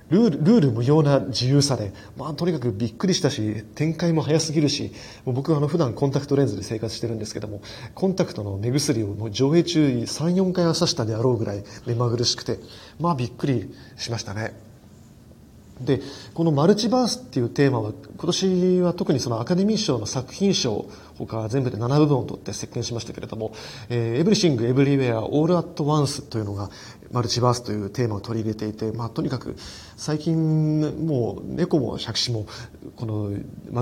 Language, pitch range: Japanese, 110-155 Hz